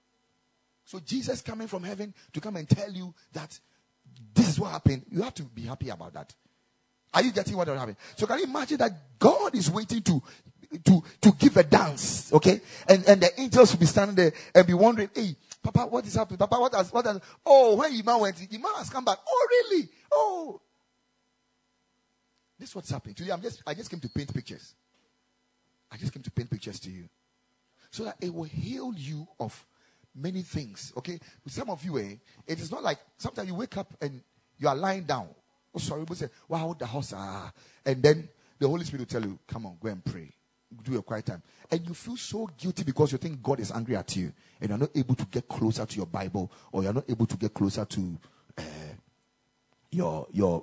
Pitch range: 120-195 Hz